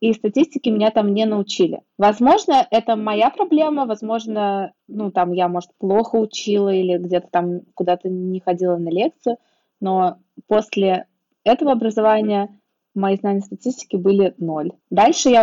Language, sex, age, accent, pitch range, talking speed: Russian, female, 20-39, native, 190-230 Hz, 140 wpm